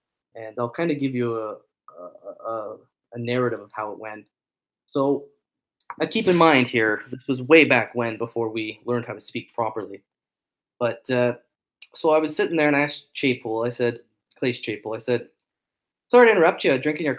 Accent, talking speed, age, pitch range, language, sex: American, 195 wpm, 20-39, 125-180 Hz, English, male